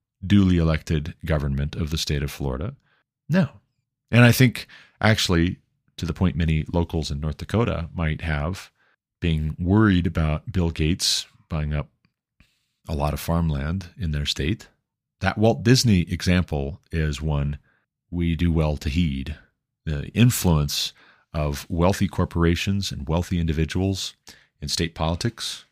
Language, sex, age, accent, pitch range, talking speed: English, male, 40-59, American, 75-100 Hz, 140 wpm